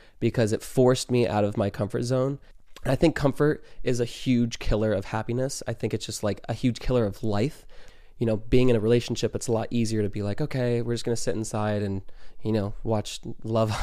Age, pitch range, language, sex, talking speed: 20-39, 105-125 Hz, English, male, 225 wpm